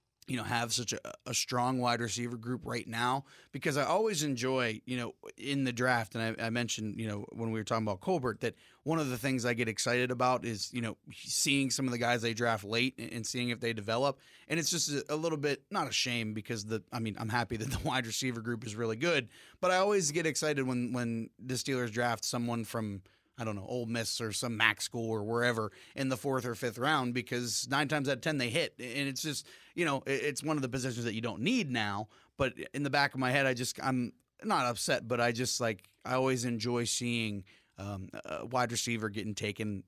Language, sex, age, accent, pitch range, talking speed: English, male, 30-49, American, 110-130 Hz, 240 wpm